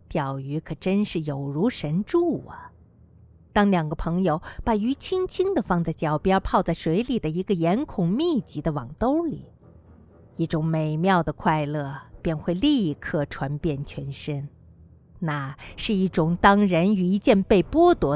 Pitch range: 155-235 Hz